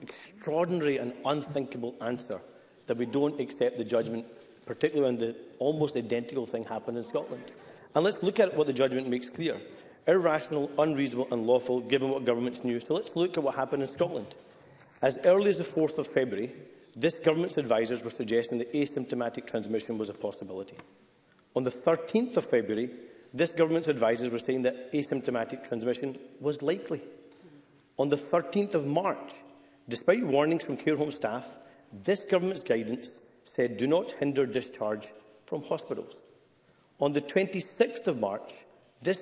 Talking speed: 160 wpm